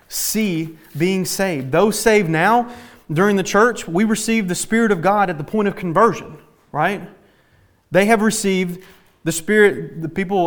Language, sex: English, male